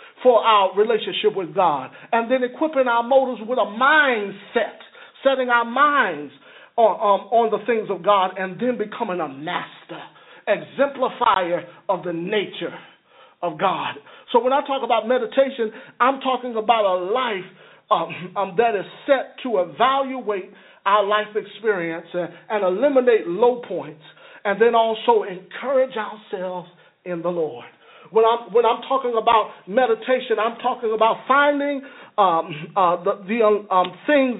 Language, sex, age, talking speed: English, male, 40-59, 150 wpm